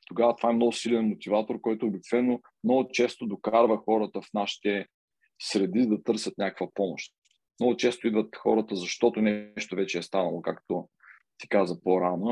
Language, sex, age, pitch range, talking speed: Bulgarian, male, 40-59, 95-115 Hz, 155 wpm